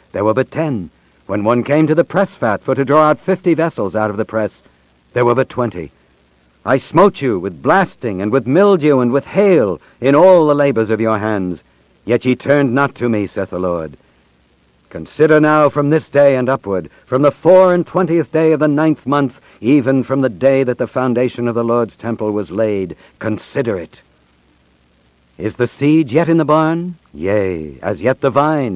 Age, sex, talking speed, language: 60-79, male, 195 wpm, English